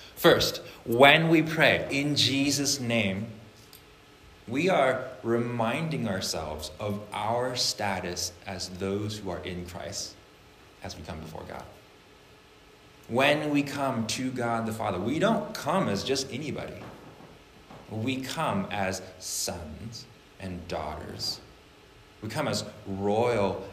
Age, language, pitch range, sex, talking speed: 30-49, English, 95-115 Hz, male, 120 wpm